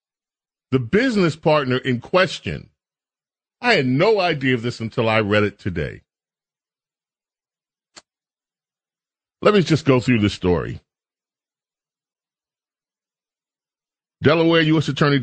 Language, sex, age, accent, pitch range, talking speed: English, male, 40-59, American, 110-145 Hz, 100 wpm